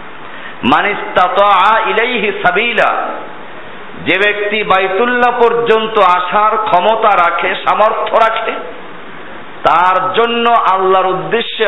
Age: 50-69